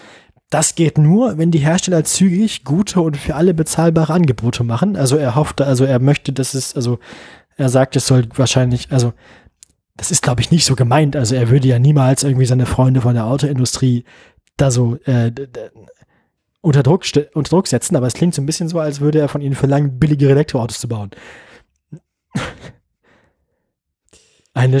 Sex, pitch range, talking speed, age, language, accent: male, 125-155 Hz, 185 wpm, 20-39, German, German